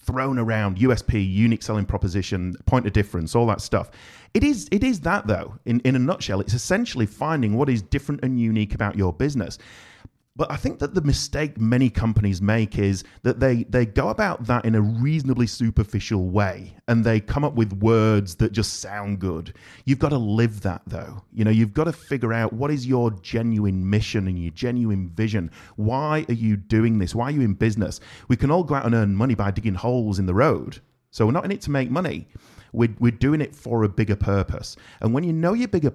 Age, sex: 30-49, male